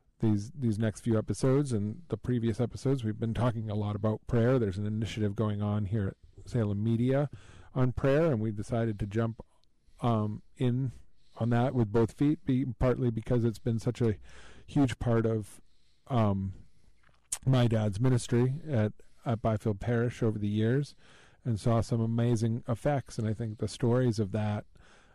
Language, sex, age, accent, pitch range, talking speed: English, male, 40-59, American, 105-120 Hz, 170 wpm